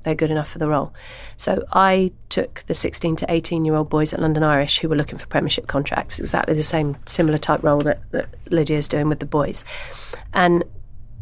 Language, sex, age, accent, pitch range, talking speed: English, female, 40-59, British, 150-175 Hz, 215 wpm